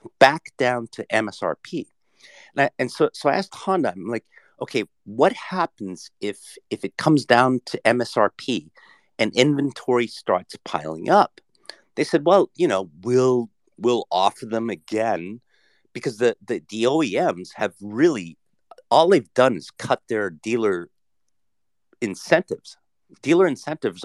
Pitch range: 115-165 Hz